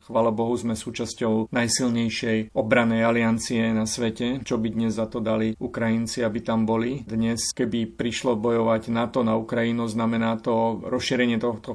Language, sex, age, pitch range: Slovak, male, 40-59, 115-120 Hz